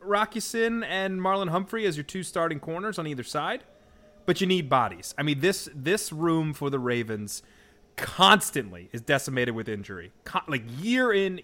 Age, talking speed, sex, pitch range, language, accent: 30-49, 180 wpm, male, 120-180 Hz, English, American